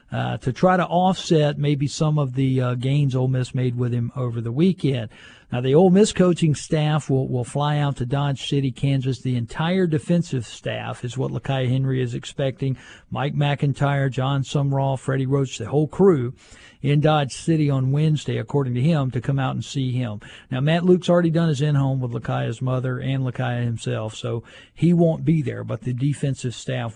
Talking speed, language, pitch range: 195 wpm, English, 125-150 Hz